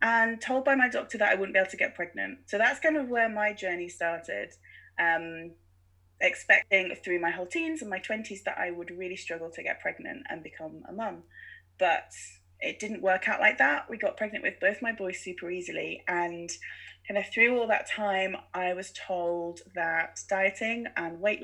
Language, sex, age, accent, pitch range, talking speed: English, female, 20-39, British, 165-210 Hz, 200 wpm